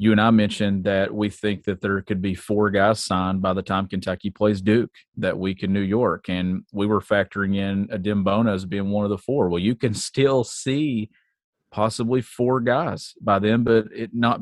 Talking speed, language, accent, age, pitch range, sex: 210 wpm, English, American, 40-59, 95-110 Hz, male